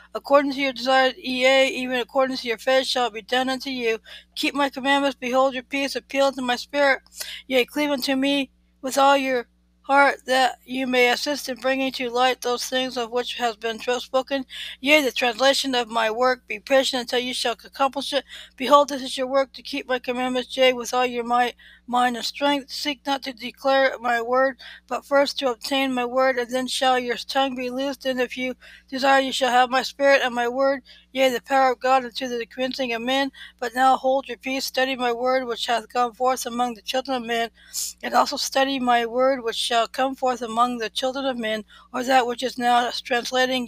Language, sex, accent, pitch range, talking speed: English, female, American, 245-270 Hz, 215 wpm